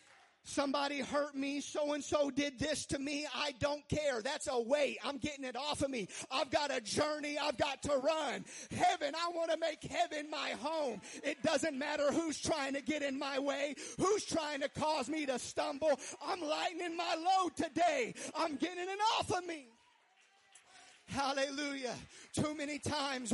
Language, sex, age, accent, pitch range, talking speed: English, male, 40-59, American, 275-305 Hz, 180 wpm